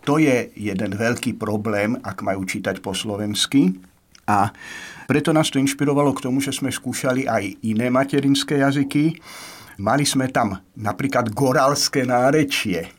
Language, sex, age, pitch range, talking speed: Slovak, male, 50-69, 110-135 Hz, 140 wpm